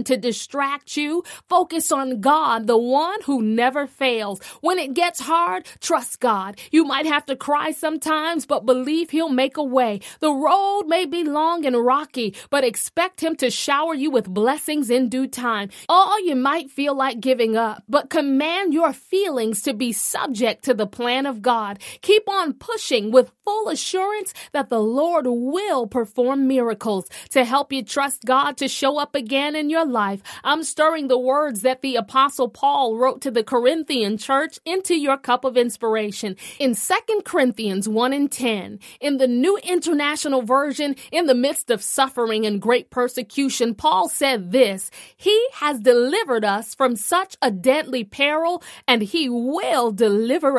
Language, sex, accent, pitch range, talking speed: English, female, American, 240-315 Hz, 170 wpm